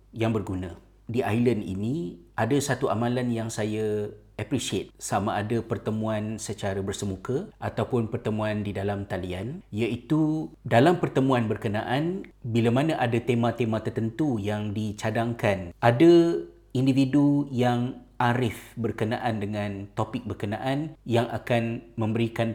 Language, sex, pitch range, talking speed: Malay, male, 105-125 Hz, 115 wpm